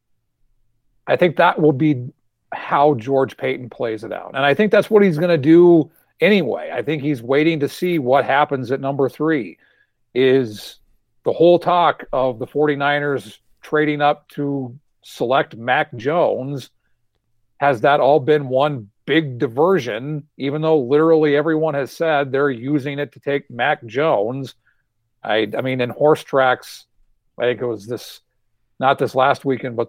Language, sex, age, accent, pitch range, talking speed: English, male, 50-69, American, 120-150 Hz, 165 wpm